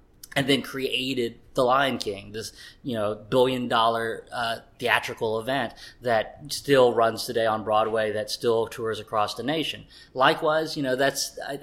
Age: 20-39